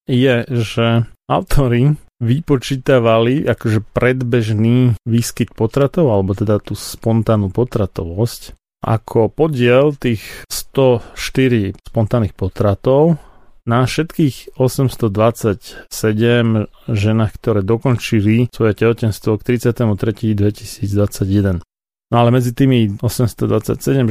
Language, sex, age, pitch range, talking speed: Slovak, male, 30-49, 110-130 Hz, 90 wpm